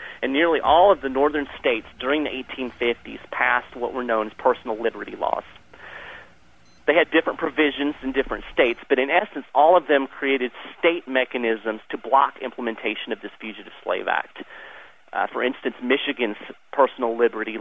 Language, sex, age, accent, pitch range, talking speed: English, male, 30-49, American, 120-155 Hz, 165 wpm